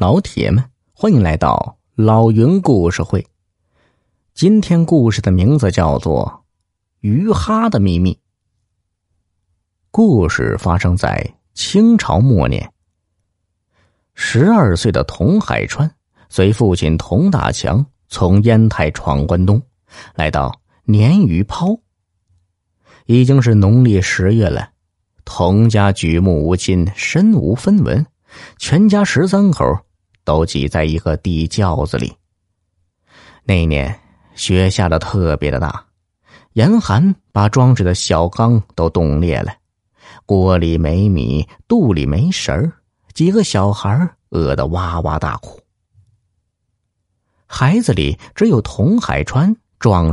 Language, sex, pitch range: Chinese, male, 85-115 Hz